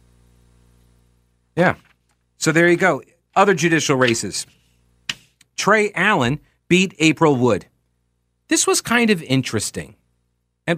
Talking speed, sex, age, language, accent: 105 wpm, male, 40-59, English, American